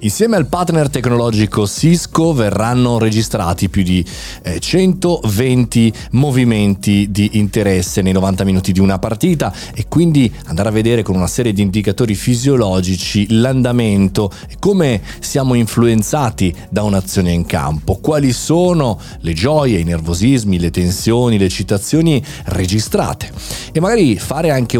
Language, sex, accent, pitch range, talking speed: Italian, male, native, 95-125 Hz, 130 wpm